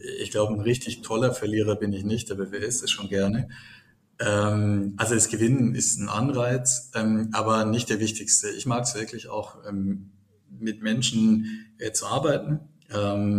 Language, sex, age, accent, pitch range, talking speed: German, male, 20-39, German, 105-115 Hz, 175 wpm